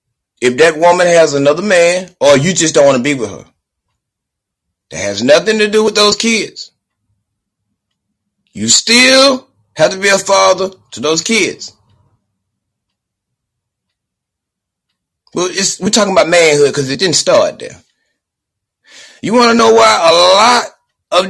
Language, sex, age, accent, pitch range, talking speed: English, male, 30-49, American, 120-190 Hz, 145 wpm